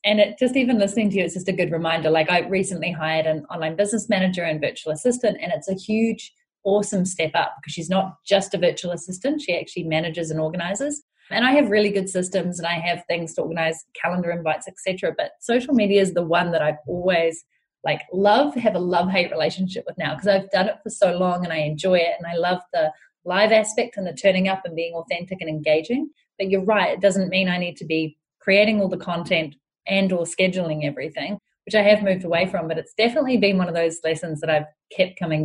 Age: 30-49